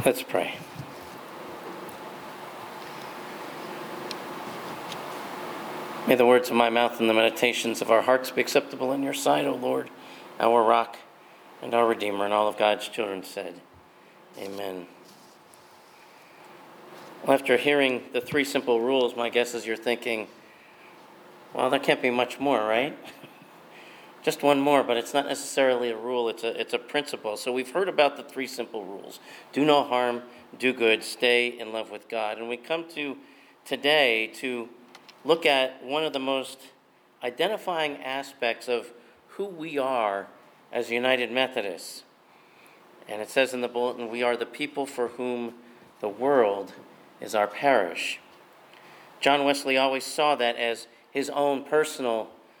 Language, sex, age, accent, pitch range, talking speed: English, male, 40-59, American, 115-135 Hz, 150 wpm